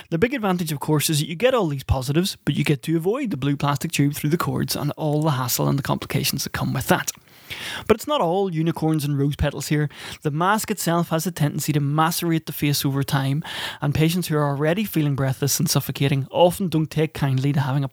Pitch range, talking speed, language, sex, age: 140-170 Hz, 240 wpm, English, male, 20-39